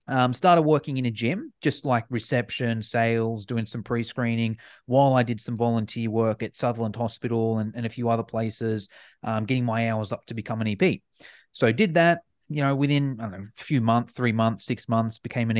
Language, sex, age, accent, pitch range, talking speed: English, male, 30-49, Australian, 115-155 Hz, 215 wpm